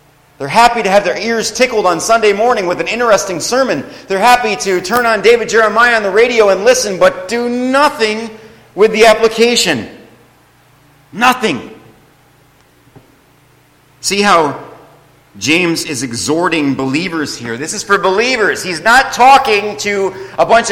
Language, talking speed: English, 145 wpm